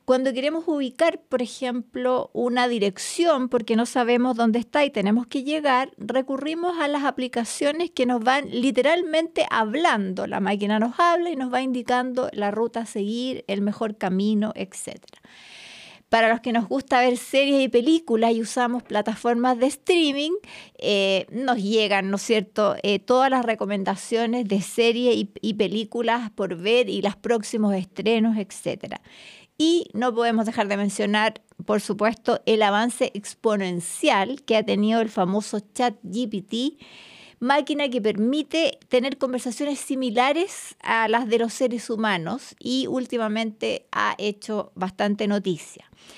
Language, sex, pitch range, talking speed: Spanish, female, 215-275 Hz, 145 wpm